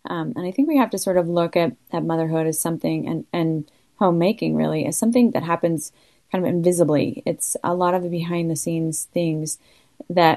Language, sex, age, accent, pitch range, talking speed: English, female, 30-49, American, 155-185 Hz, 195 wpm